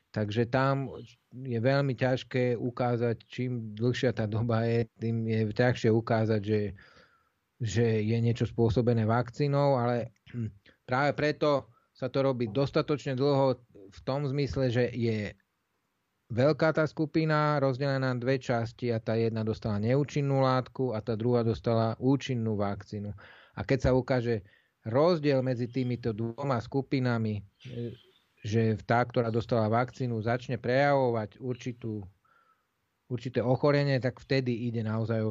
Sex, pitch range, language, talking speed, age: male, 115-135 Hz, Slovak, 130 wpm, 30-49